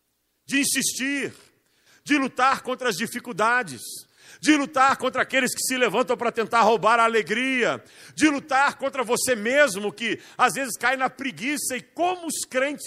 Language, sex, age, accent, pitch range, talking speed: Portuguese, male, 50-69, Brazilian, 170-265 Hz, 160 wpm